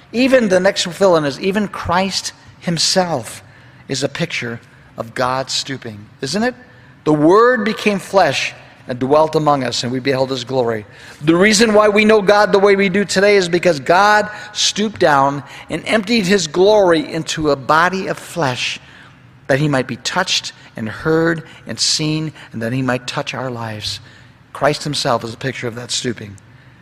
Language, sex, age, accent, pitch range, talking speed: English, male, 50-69, American, 135-205 Hz, 175 wpm